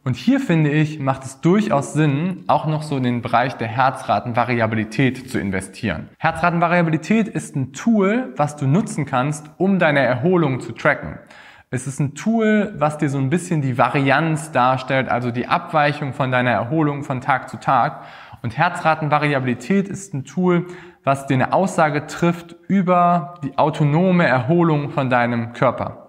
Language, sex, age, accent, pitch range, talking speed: German, male, 20-39, German, 120-155 Hz, 160 wpm